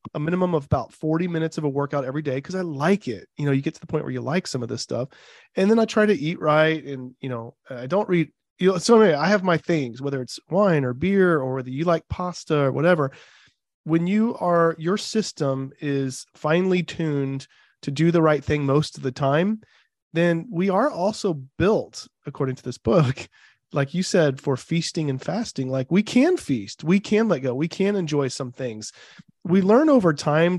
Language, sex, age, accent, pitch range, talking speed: English, male, 30-49, American, 135-180 Hz, 220 wpm